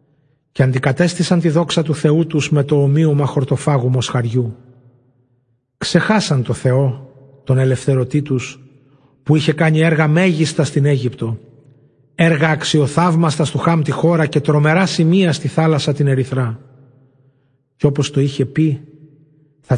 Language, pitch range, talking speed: Greek, 135-160 Hz, 135 wpm